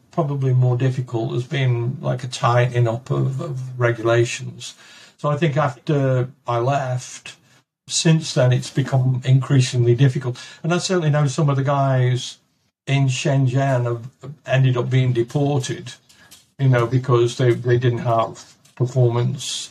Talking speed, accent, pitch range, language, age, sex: 145 wpm, British, 120-145 Hz, English, 60-79, male